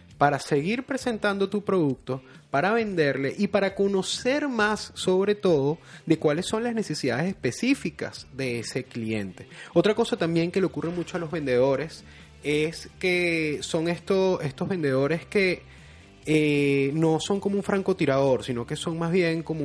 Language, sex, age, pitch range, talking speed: Spanish, male, 20-39, 145-200 Hz, 155 wpm